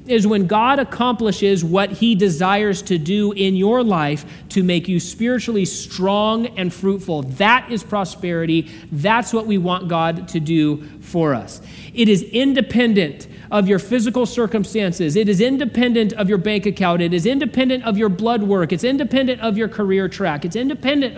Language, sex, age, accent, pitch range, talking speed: English, male, 40-59, American, 180-230 Hz, 170 wpm